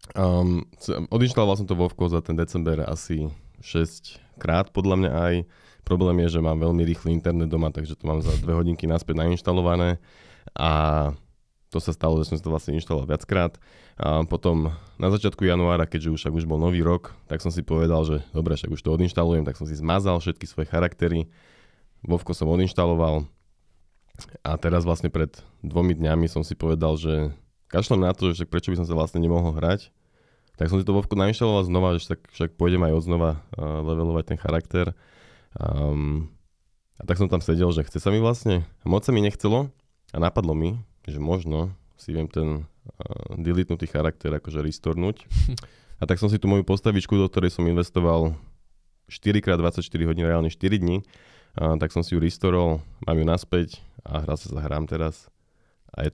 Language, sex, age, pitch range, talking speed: Slovak, male, 20-39, 80-90 Hz, 185 wpm